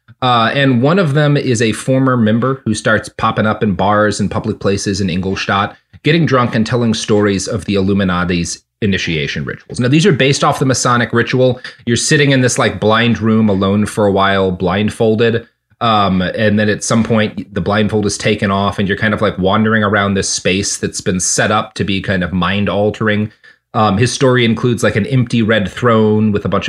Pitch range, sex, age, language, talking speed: 100-130 Hz, male, 30-49, English, 200 wpm